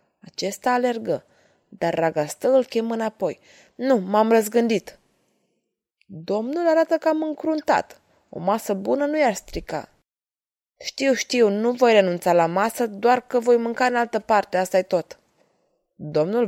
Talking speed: 140 wpm